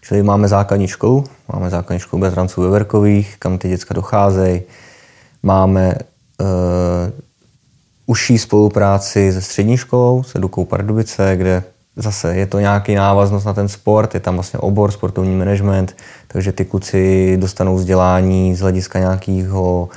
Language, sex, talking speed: Czech, male, 140 wpm